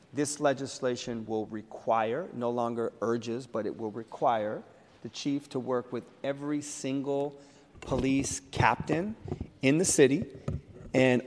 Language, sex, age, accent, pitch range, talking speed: English, male, 40-59, American, 110-130 Hz, 130 wpm